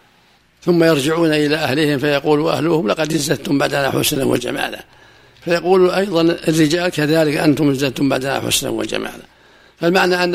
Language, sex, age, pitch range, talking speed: Arabic, male, 60-79, 140-165 Hz, 130 wpm